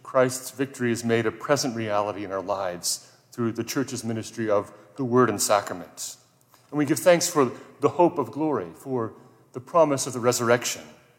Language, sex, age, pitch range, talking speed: English, male, 30-49, 115-135 Hz, 180 wpm